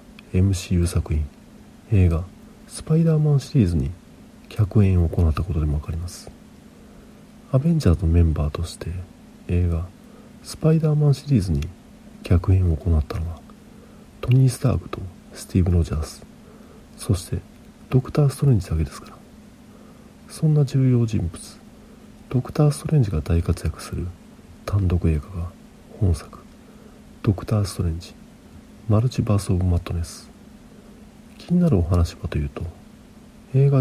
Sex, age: male, 40-59